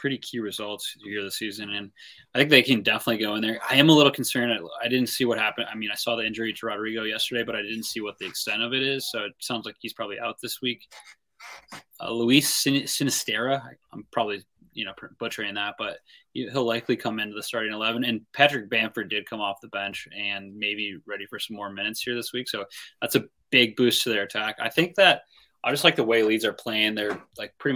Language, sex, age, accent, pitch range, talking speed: English, male, 20-39, American, 105-125 Hz, 240 wpm